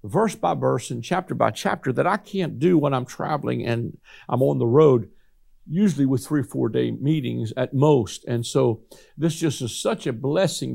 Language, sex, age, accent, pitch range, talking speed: English, male, 50-69, American, 105-150 Hz, 200 wpm